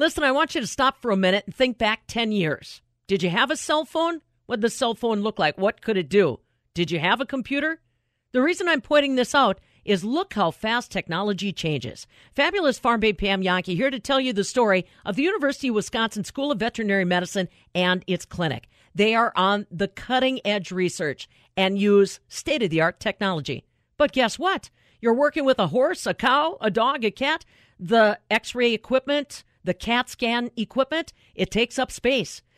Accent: American